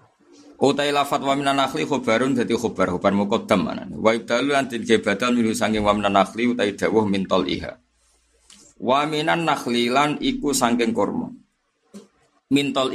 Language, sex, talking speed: Indonesian, male, 120 wpm